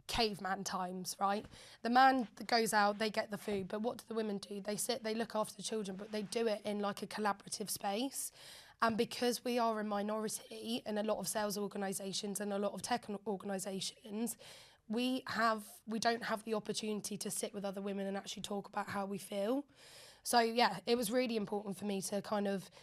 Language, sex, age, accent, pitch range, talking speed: English, female, 10-29, British, 205-230 Hz, 215 wpm